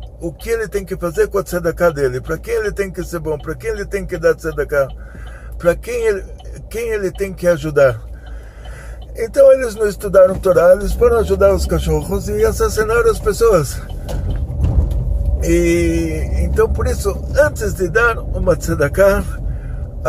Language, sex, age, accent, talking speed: Portuguese, male, 60-79, Brazilian, 165 wpm